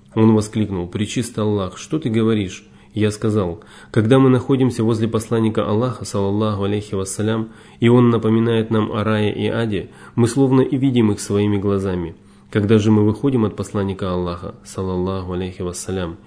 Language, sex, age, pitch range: Russian, male, 20-39, 100-110 Hz